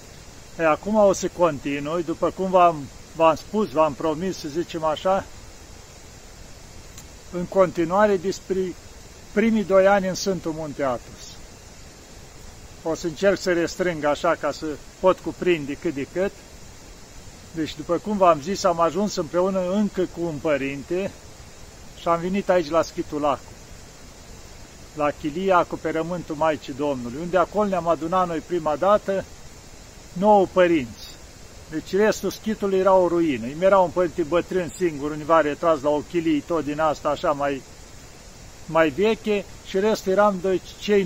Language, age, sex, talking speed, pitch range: Romanian, 50-69, male, 140 wpm, 160-190 Hz